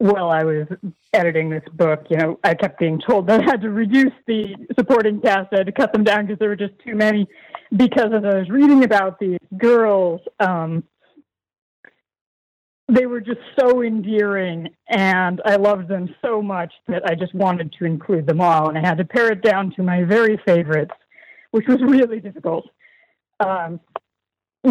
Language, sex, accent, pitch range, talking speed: English, female, American, 170-215 Hz, 185 wpm